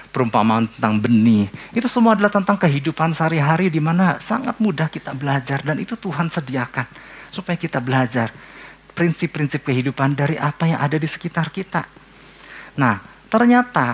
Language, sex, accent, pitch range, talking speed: Indonesian, male, native, 150-225 Hz, 140 wpm